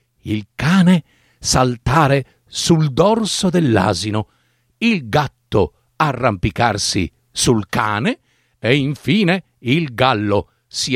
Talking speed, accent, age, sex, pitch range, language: 90 wpm, native, 50-69, male, 120-205 Hz, Italian